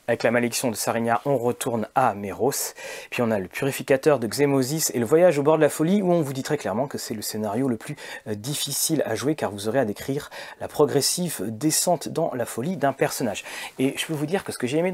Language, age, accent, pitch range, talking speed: French, 40-59, French, 125-165 Hz, 255 wpm